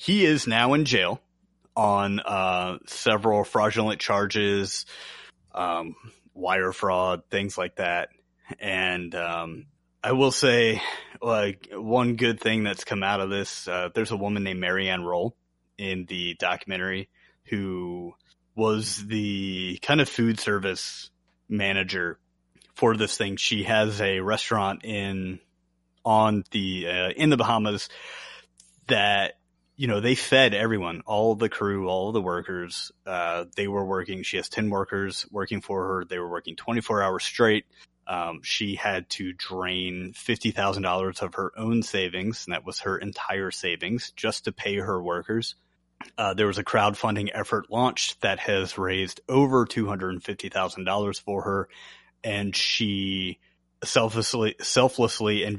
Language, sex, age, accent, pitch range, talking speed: English, male, 30-49, American, 90-110 Hz, 140 wpm